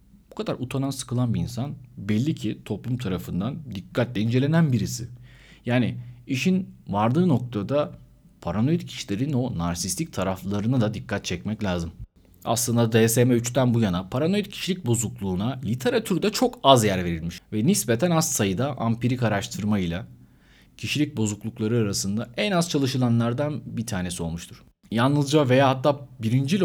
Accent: native